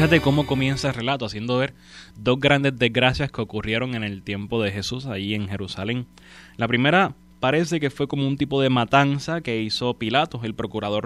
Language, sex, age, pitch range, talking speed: Spanish, male, 20-39, 100-130 Hz, 190 wpm